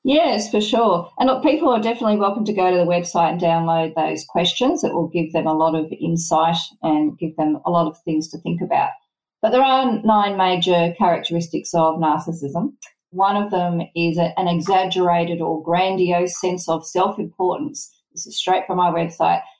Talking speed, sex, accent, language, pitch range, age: 185 wpm, female, Australian, English, 170-210 Hz, 40-59